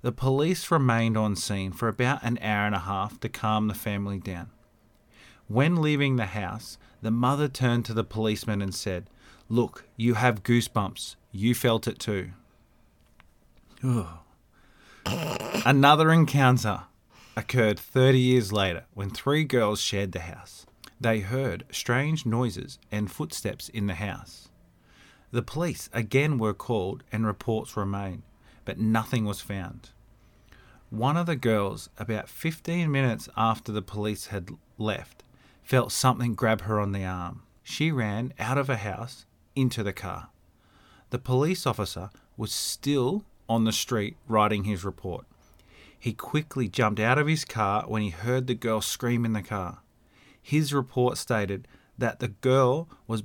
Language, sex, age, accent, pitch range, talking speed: English, male, 30-49, Australian, 105-130 Hz, 150 wpm